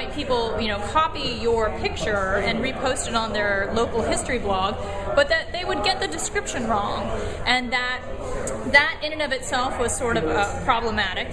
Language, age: English, 20-39